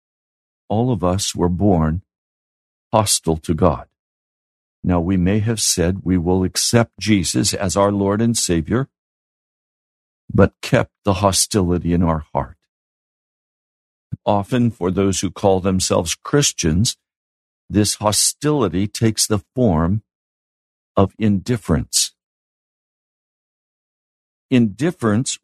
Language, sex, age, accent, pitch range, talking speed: English, male, 60-79, American, 85-125 Hz, 105 wpm